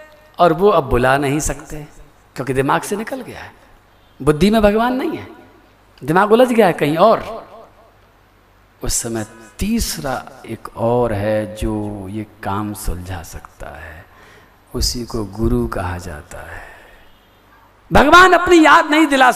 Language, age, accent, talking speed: Hindi, 50-69, native, 145 wpm